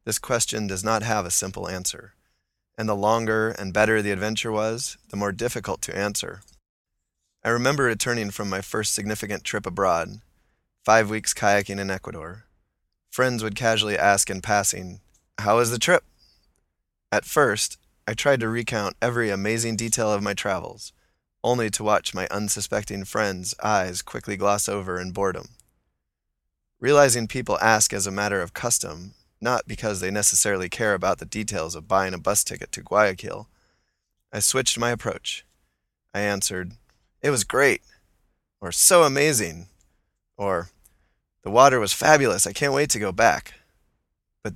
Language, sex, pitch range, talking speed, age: English, male, 95-115 Hz, 155 wpm, 20-39